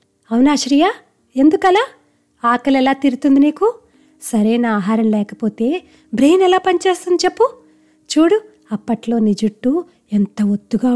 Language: Telugu